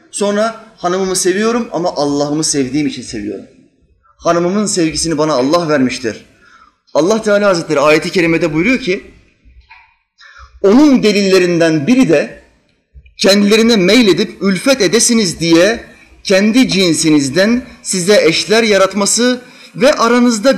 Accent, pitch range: native, 155-235 Hz